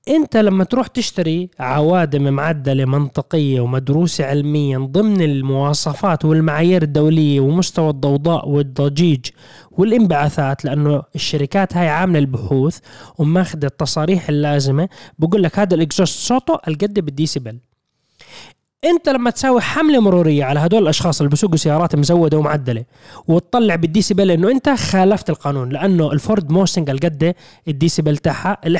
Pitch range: 145-185 Hz